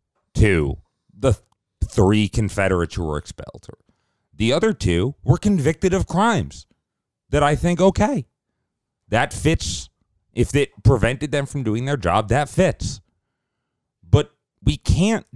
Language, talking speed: English, 130 wpm